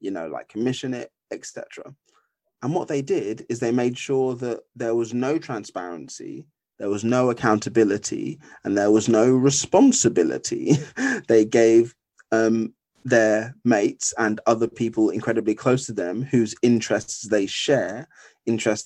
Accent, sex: British, male